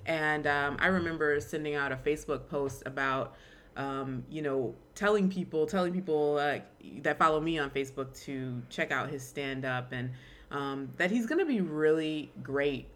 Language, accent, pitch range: English, American, 135-160 Hz